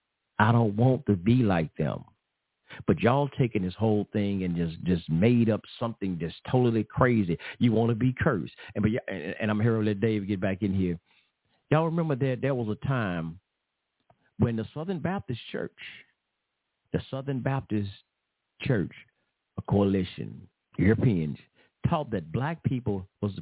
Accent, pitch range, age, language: American, 100-125 Hz, 50-69, English